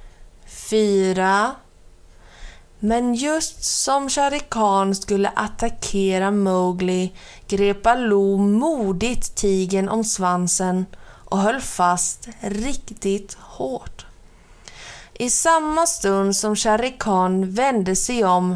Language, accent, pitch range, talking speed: Swedish, native, 190-230 Hz, 85 wpm